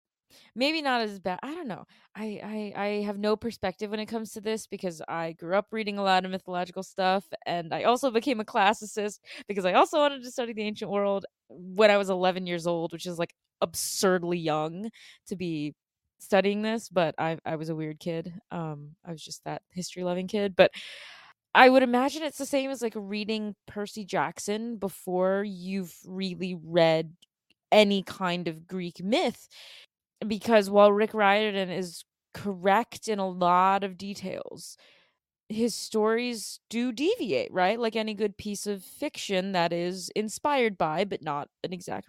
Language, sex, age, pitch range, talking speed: English, female, 20-39, 180-225 Hz, 175 wpm